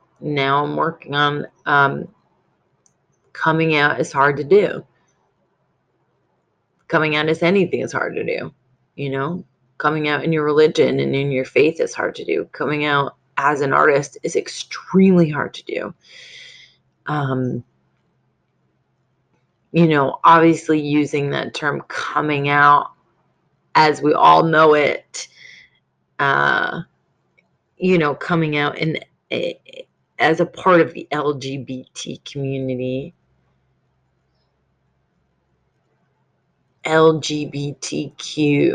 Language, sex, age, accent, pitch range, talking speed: English, female, 30-49, American, 135-170 Hz, 115 wpm